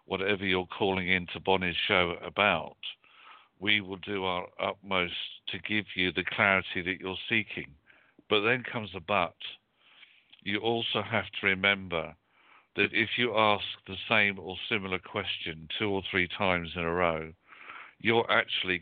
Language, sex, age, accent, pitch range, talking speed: English, male, 60-79, British, 90-105 Hz, 155 wpm